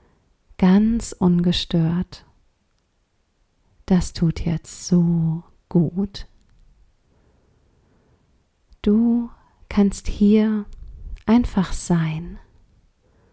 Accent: German